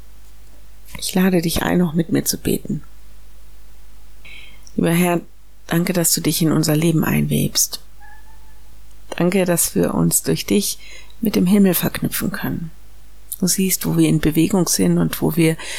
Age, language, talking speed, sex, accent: 50-69, German, 150 wpm, female, German